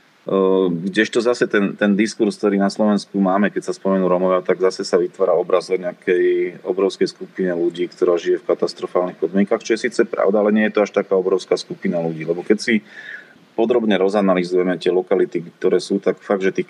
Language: Slovak